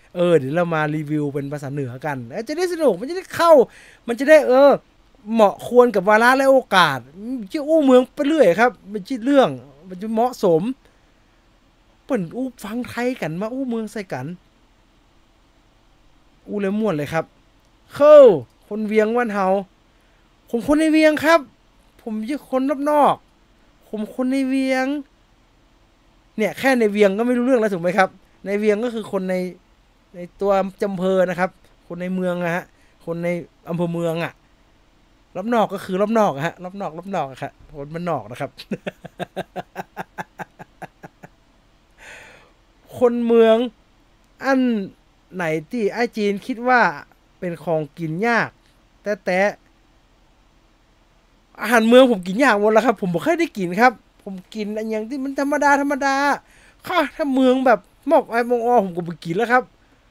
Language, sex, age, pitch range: English, male, 20-39, 165-250 Hz